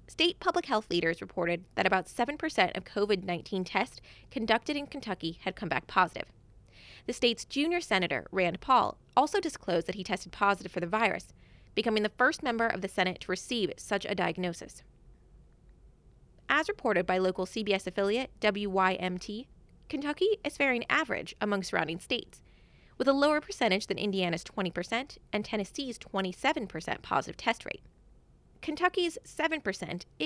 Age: 20-39